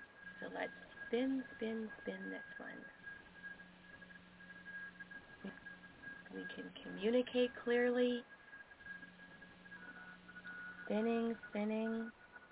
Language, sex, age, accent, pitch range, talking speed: English, female, 30-49, American, 205-285 Hz, 60 wpm